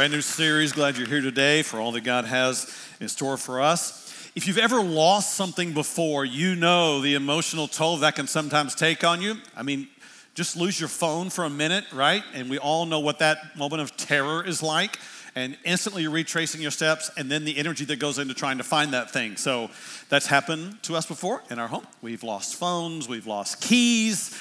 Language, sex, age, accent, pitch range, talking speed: English, male, 50-69, American, 140-180 Hz, 215 wpm